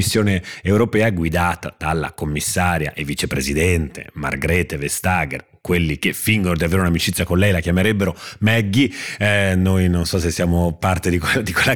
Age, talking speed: 30-49, 160 wpm